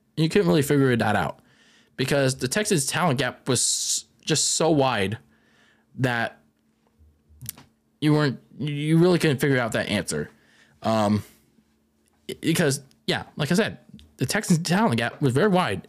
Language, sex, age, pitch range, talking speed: English, male, 20-39, 125-165 Hz, 145 wpm